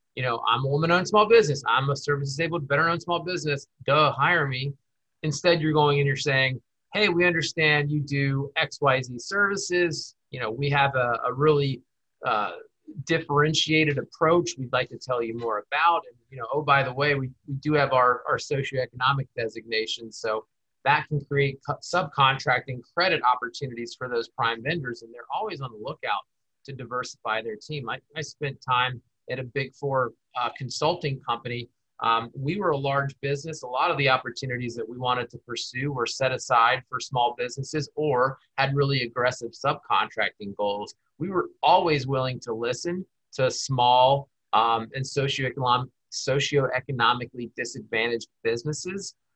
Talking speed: 165 wpm